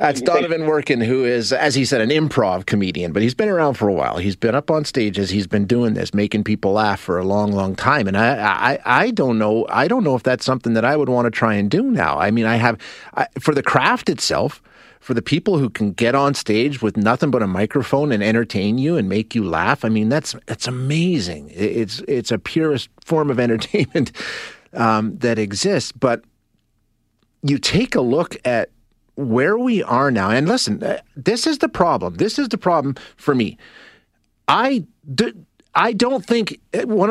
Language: English